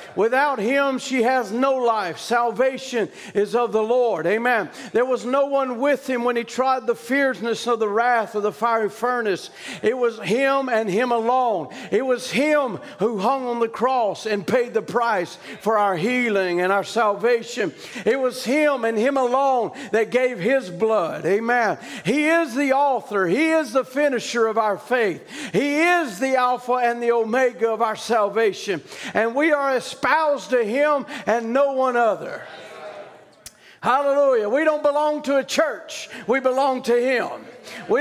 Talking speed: 170 wpm